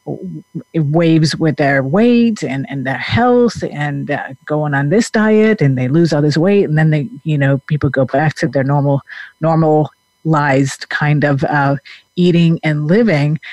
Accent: American